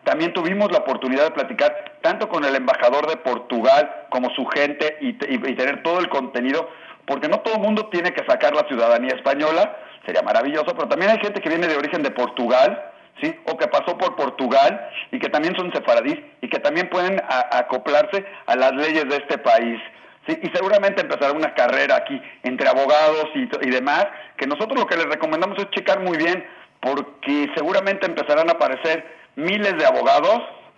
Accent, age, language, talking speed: Mexican, 40-59, Spanish, 185 wpm